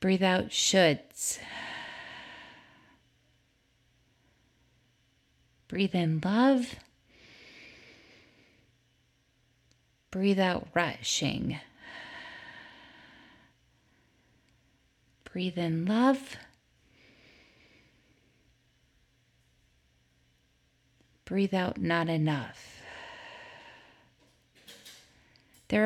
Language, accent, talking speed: English, American, 40 wpm